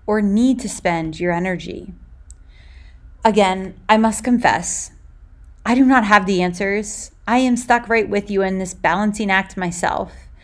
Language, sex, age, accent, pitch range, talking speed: English, female, 30-49, American, 170-245 Hz, 155 wpm